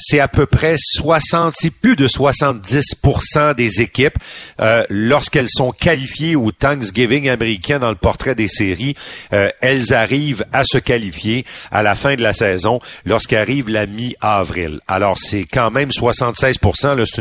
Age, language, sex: 50-69, French, male